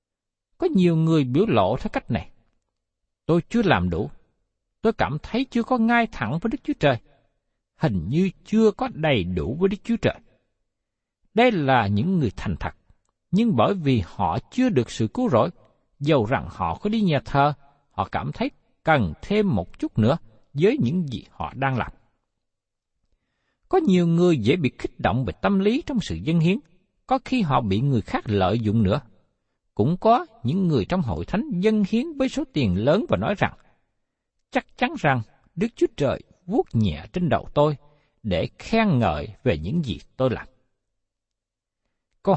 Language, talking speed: Vietnamese, 180 wpm